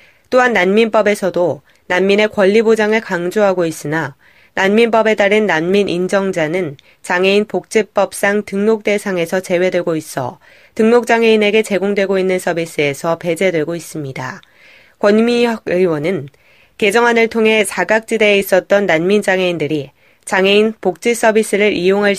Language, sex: Korean, female